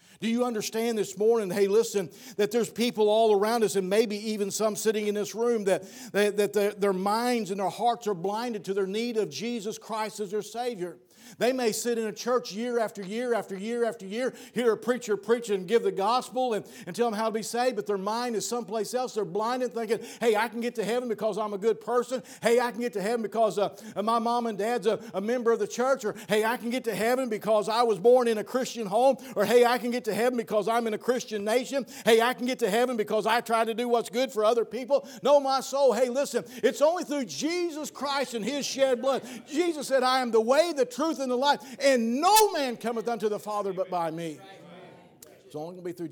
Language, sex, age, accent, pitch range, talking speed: English, male, 50-69, American, 155-240 Hz, 250 wpm